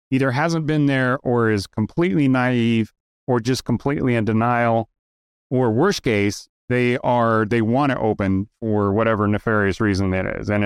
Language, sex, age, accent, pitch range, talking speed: English, male, 30-49, American, 100-125 Hz, 165 wpm